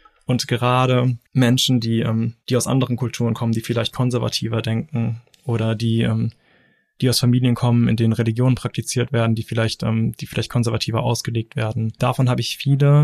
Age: 20-39